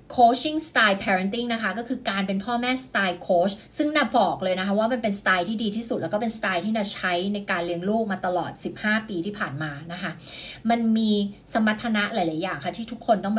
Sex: female